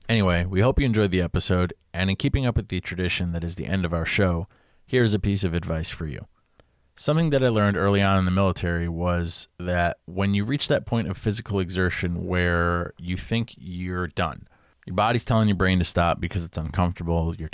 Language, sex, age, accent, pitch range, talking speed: English, male, 30-49, American, 85-100 Hz, 215 wpm